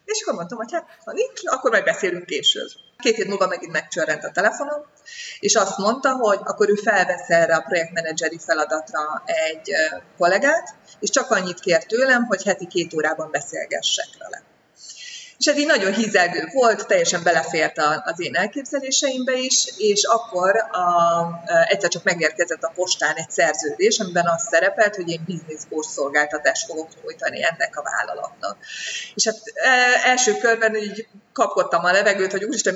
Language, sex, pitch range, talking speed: Hungarian, female, 170-250 Hz, 155 wpm